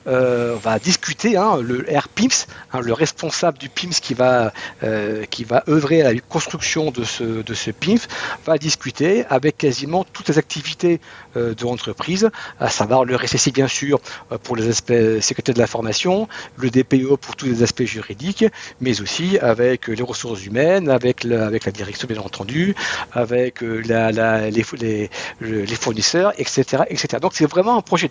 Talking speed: 175 wpm